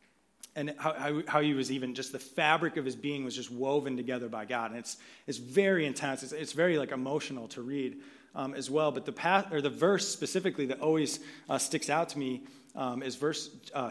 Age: 30-49